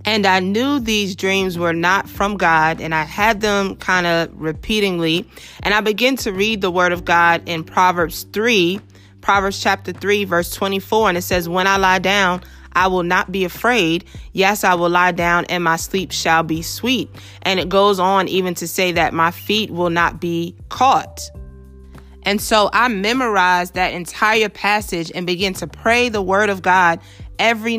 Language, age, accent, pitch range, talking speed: English, 30-49, American, 170-205 Hz, 185 wpm